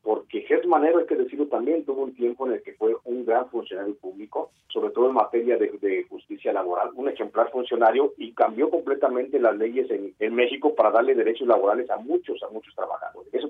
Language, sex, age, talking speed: Spanish, male, 40-59, 210 wpm